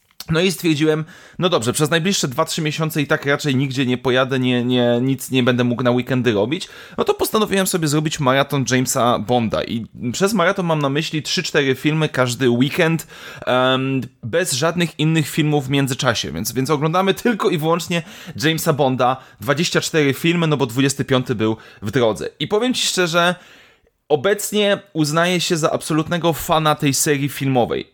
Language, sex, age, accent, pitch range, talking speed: Polish, male, 30-49, native, 140-175 Hz, 160 wpm